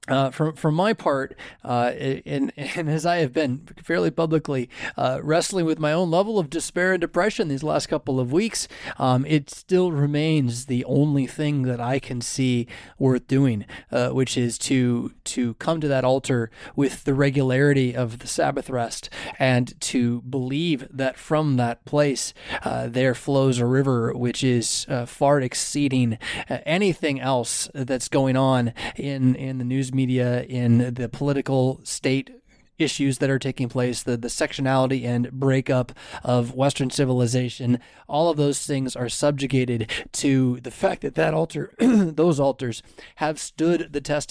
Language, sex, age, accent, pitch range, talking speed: English, male, 20-39, American, 125-150 Hz, 160 wpm